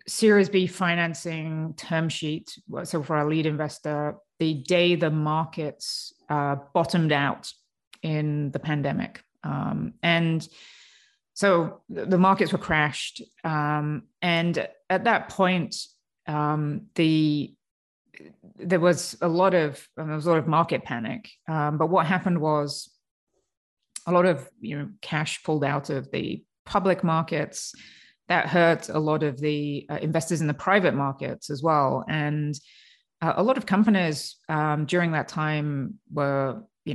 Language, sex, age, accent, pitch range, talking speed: English, female, 30-49, Australian, 150-175 Hz, 145 wpm